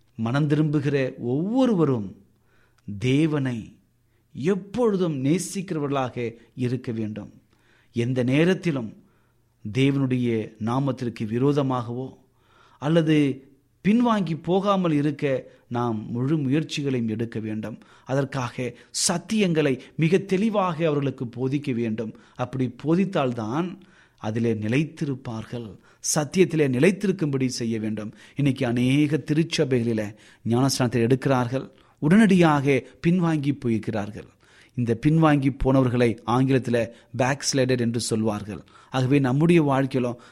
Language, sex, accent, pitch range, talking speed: Tamil, male, native, 120-155 Hz, 80 wpm